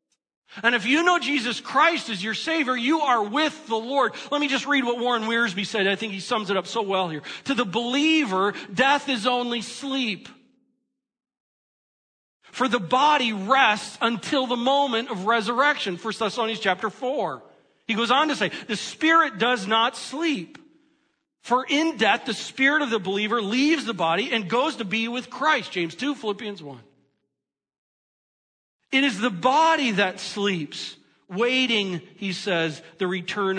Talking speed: 165 wpm